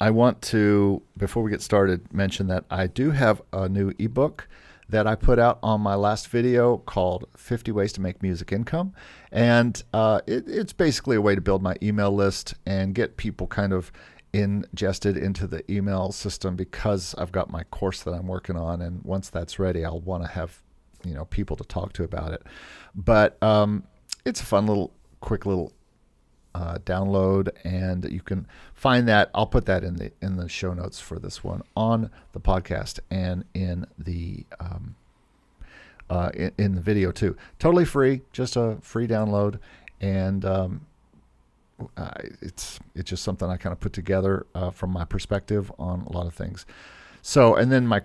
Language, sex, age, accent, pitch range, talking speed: English, male, 50-69, American, 90-105 Hz, 185 wpm